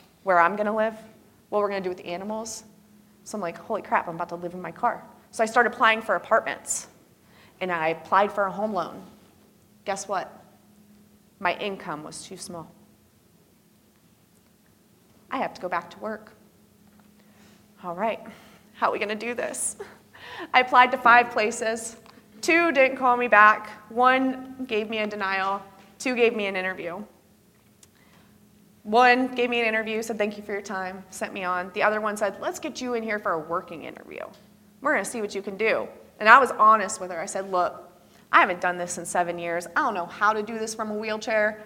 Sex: female